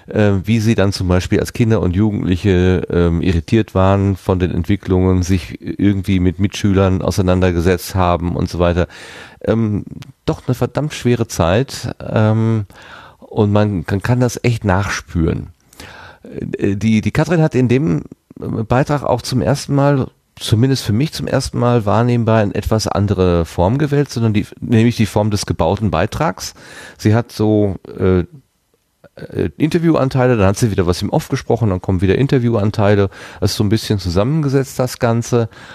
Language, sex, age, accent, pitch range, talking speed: German, male, 40-59, German, 95-120 Hz, 155 wpm